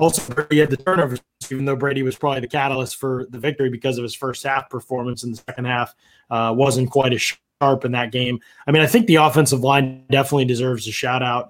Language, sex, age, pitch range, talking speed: English, male, 20-39, 125-145 Hz, 225 wpm